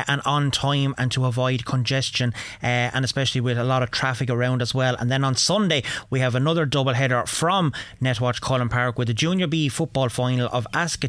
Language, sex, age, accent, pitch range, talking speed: English, male, 30-49, Irish, 125-150 Hz, 210 wpm